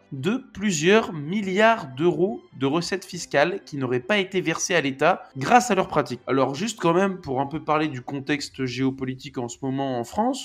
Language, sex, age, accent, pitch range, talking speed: French, male, 20-39, French, 130-175 Hz, 195 wpm